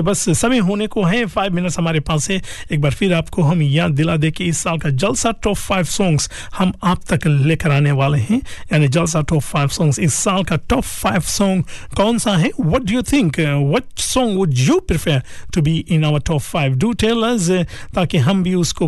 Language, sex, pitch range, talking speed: Hindi, male, 150-185 Hz, 65 wpm